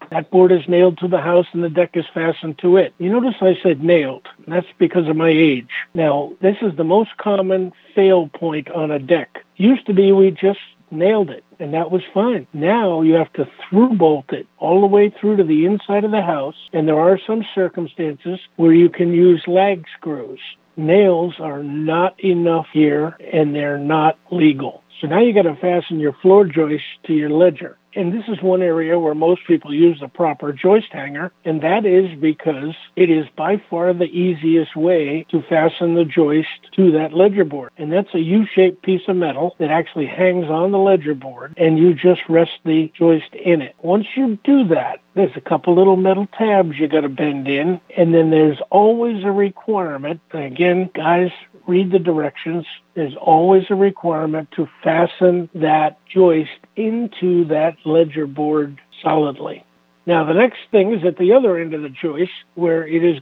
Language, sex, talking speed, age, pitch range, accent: English, male, 195 wpm, 50-69, 160-190 Hz, American